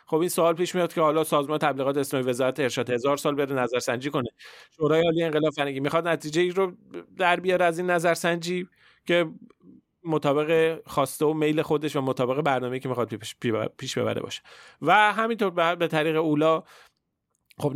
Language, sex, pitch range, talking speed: Persian, male, 115-155 Hz, 165 wpm